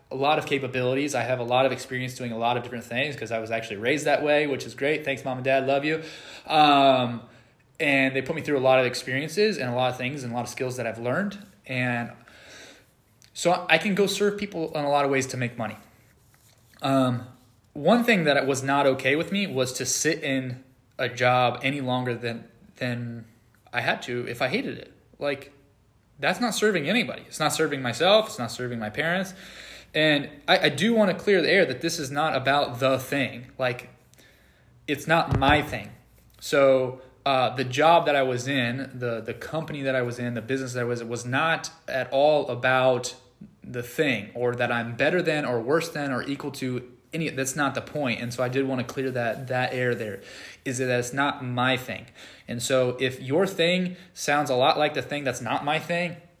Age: 20-39